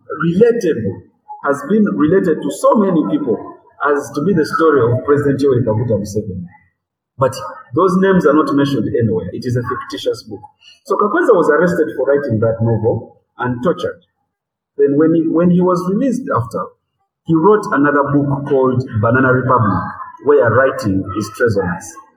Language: English